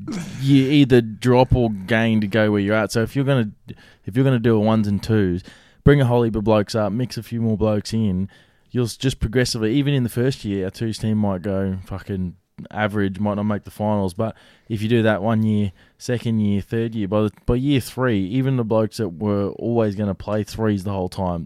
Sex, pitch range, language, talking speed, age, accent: male, 100-115 Hz, English, 240 wpm, 20-39, Australian